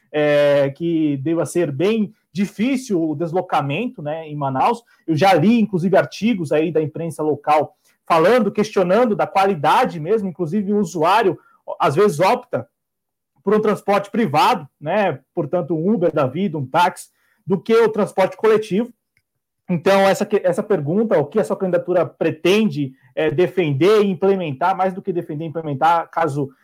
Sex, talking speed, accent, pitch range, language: male, 160 wpm, Brazilian, 165-220 Hz, Portuguese